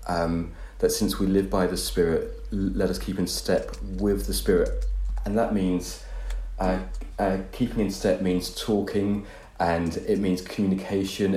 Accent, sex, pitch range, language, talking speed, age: British, male, 90-105 Hz, English, 160 wpm, 30-49